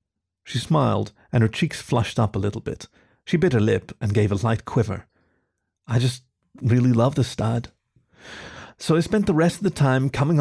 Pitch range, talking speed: 105-140 Hz, 195 wpm